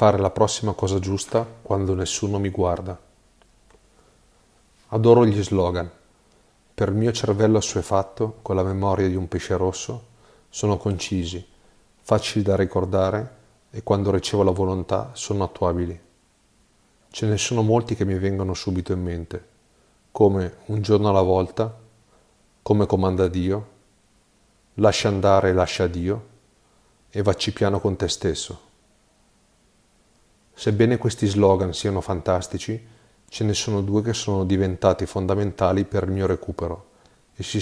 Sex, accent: male, Italian